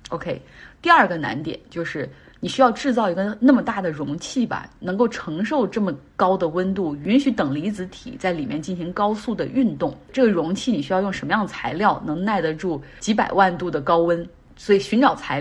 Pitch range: 170-235 Hz